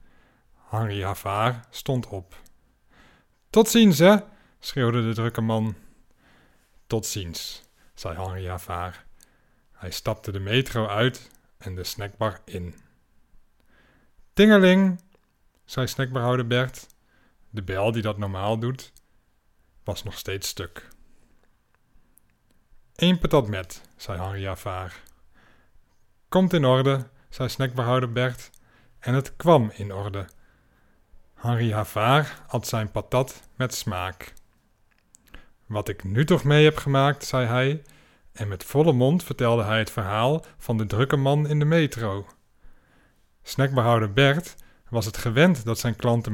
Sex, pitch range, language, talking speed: male, 105-135 Hz, Dutch, 125 wpm